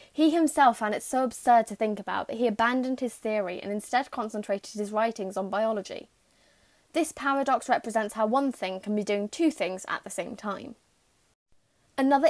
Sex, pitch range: female, 210-255 Hz